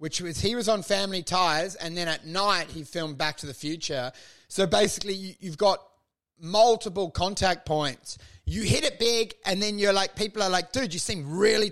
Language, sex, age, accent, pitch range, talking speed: English, male, 30-49, Australian, 185-255 Hz, 205 wpm